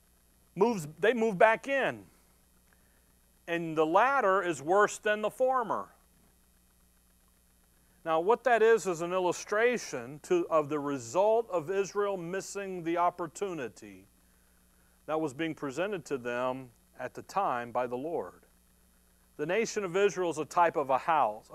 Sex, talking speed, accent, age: male, 140 wpm, American, 40-59